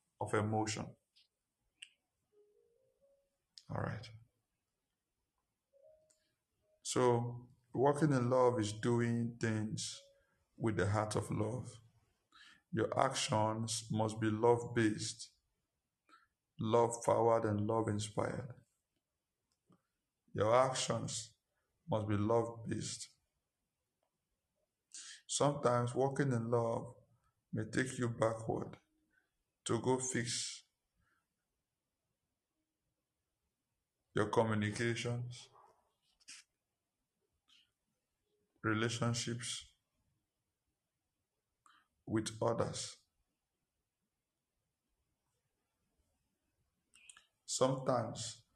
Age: 60-79